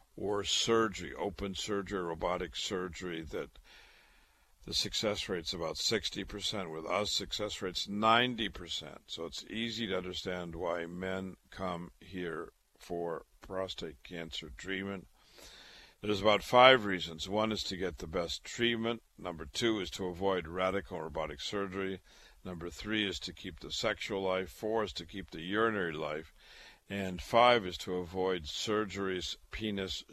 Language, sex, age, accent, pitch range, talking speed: English, male, 50-69, American, 85-105 Hz, 140 wpm